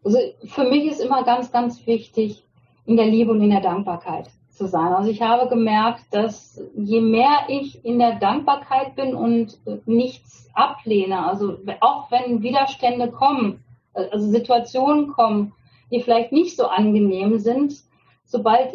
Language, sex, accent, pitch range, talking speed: German, female, German, 220-265 Hz, 150 wpm